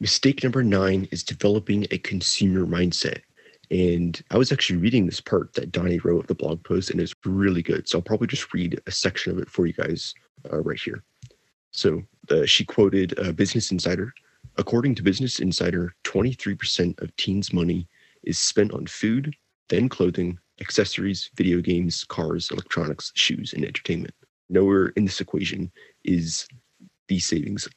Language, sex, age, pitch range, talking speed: English, male, 30-49, 90-105 Hz, 165 wpm